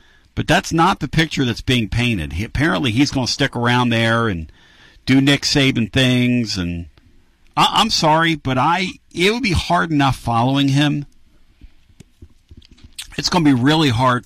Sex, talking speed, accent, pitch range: male, 170 wpm, American, 100-135 Hz